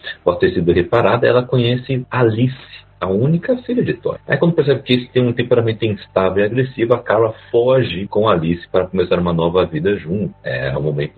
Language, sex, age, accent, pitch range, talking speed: Portuguese, male, 40-59, Brazilian, 90-135 Hz, 200 wpm